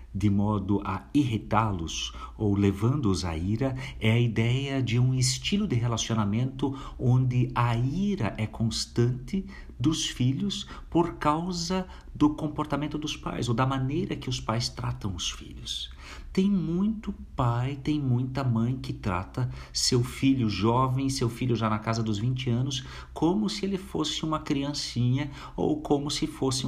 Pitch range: 110-150 Hz